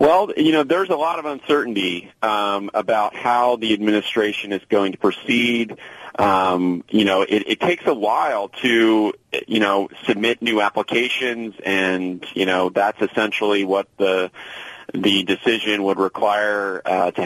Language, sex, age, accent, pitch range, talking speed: English, male, 30-49, American, 95-110 Hz, 155 wpm